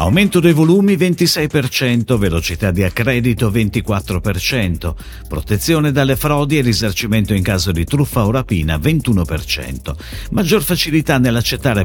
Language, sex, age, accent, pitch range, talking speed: Italian, male, 50-69, native, 90-150 Hz, 115 wpm